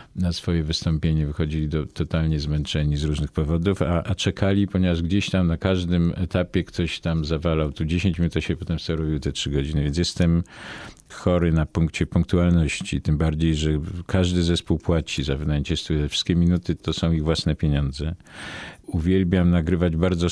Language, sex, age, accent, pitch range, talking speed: Polish, male, 50-69, native, 75-90 Hz, 160 wpm